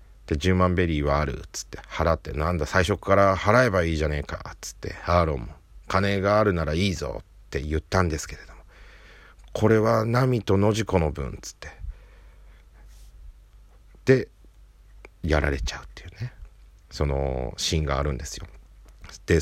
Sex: male